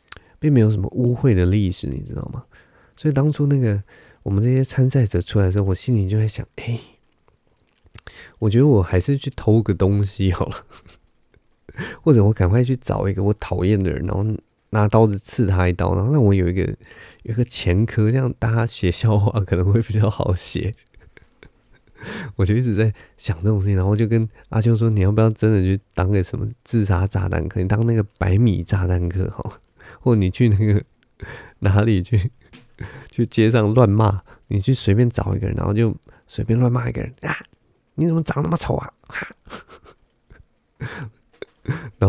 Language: Chinese